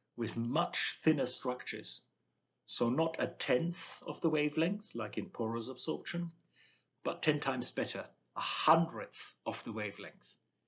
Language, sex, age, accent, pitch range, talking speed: English, male, 50-69, German, 115-170 Hz, 135 wpm